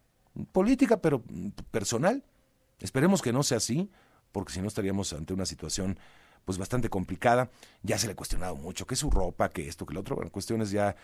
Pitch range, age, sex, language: 95-130 Hz, 50-69, male, Spanish